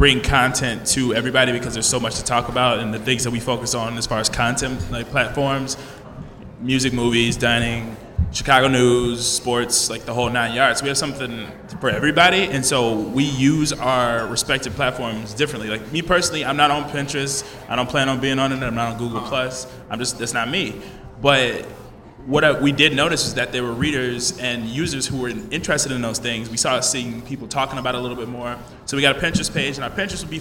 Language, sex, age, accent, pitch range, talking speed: English, male, 20-39, American, 120-140 Hz, 220 wpm